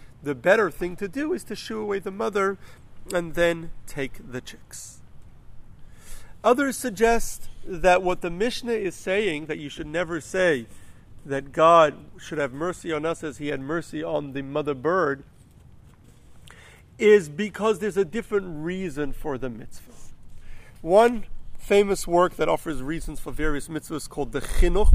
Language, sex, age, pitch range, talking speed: English, male, 50-69, 150-200 Hz, 155 wpm